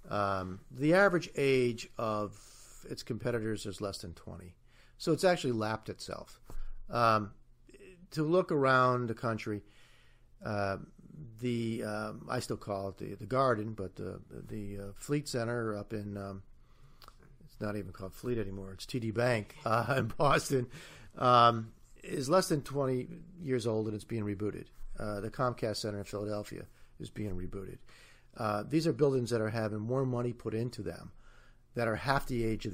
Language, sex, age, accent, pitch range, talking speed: English, male, 50-69, American, 105-140 Hz, 165 wpm